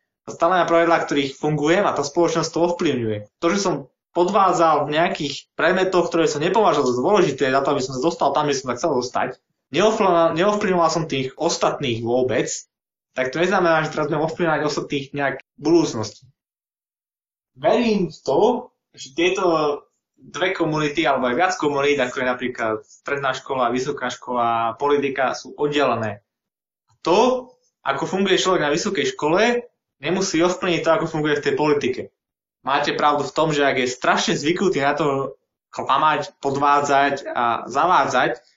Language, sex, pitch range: Slovak, male, 135-175 Hz